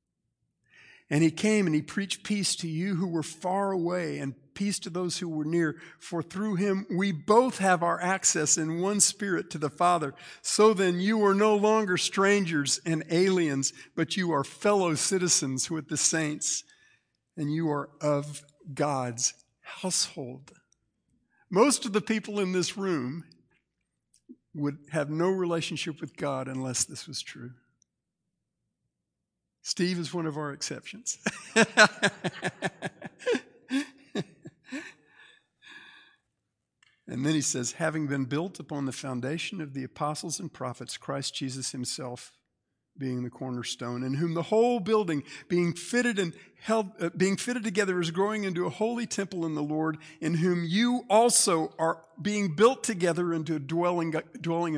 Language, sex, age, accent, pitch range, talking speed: English, male, 60-79, American, 150-200 Hz, 150 wpm